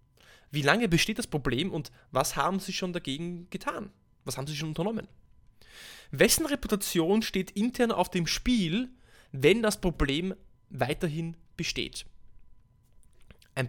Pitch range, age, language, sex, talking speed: 130-180 Hz, 20-39, German, male, 130 wpm